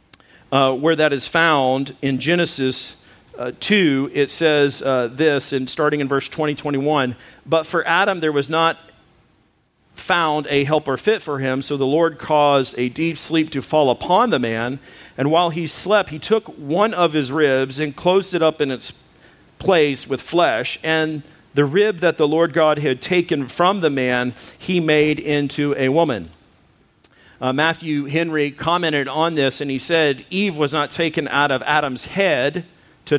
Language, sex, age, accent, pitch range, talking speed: English, male, 50-69, American, 140-165 Hz, 175 wpm